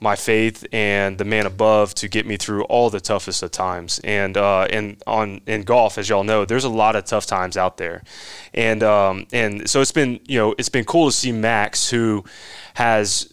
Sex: male